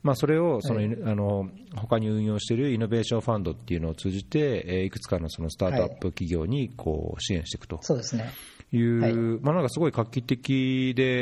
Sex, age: male, 40-59